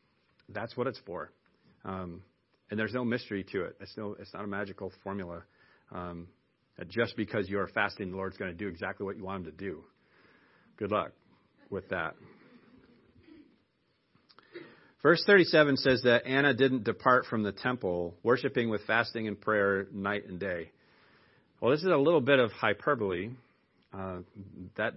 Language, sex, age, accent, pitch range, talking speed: English, male, 40-59, American, 100-125 Hz, 160 wpm